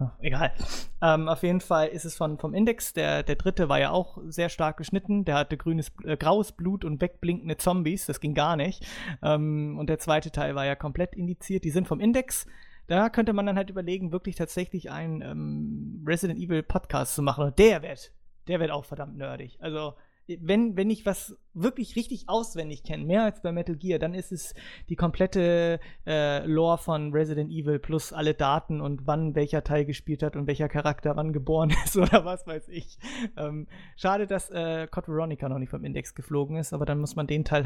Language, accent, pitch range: English, German, 150-180 Hz